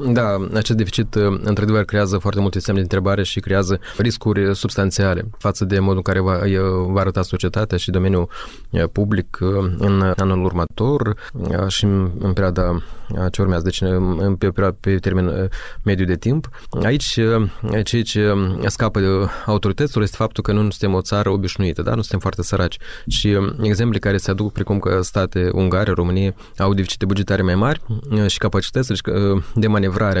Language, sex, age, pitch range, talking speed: Romanian, male, 20-39, 95-105 Hz, 165 wpm